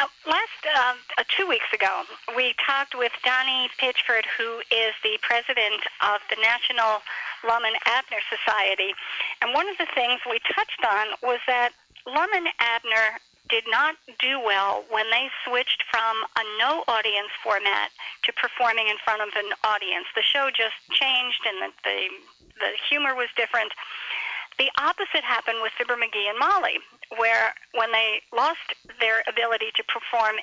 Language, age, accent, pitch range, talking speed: English, 50-69, American, 215-260 Hz, 160 wpm